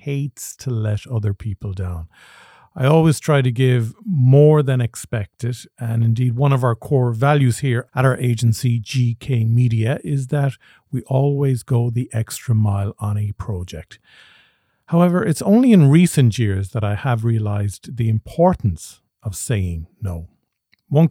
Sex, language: male, English